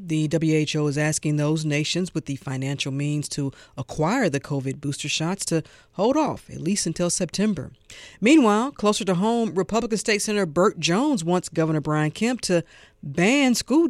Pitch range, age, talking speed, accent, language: 145-180 Hz, 50-69, 170 wpm, American, English